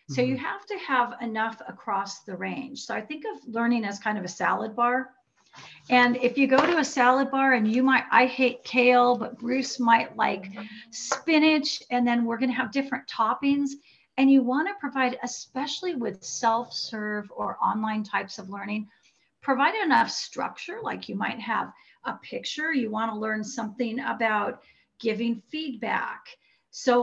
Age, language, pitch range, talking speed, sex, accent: 40-59, English, 225-270 Hz, 165 wpm, female, American